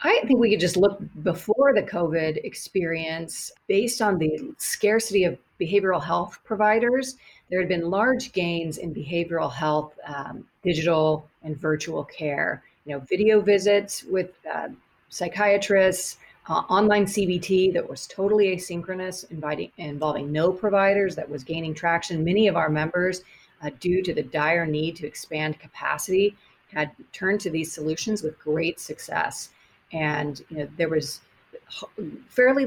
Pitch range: 155-200 Hz